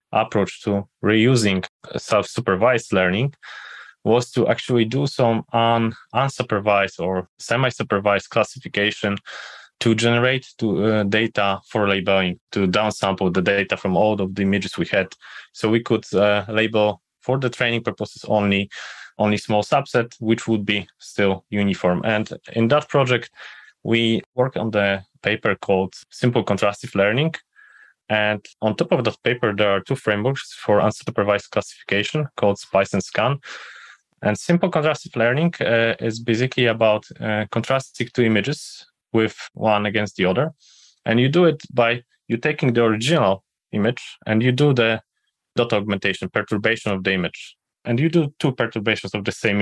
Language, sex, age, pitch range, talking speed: English, male, 20-39, 105-125 Hz, 150 wpm